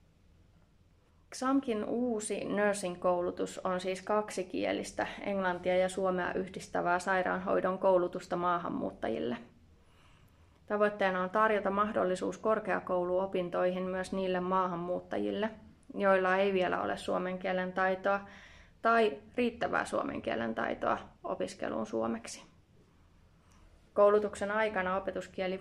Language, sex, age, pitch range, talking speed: Finnish, female, 20-39, 175-195 Hz, 90 wpm